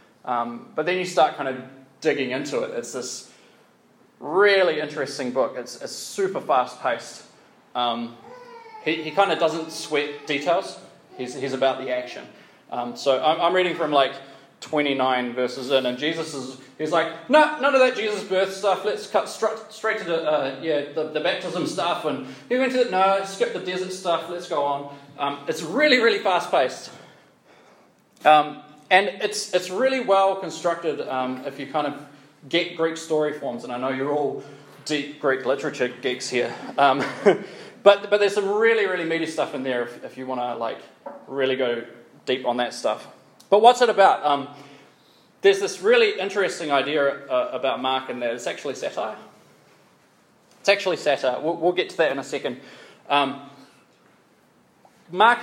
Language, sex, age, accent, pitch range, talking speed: English, male, 20-39, Australian, 135-195 Hz, 180 wpm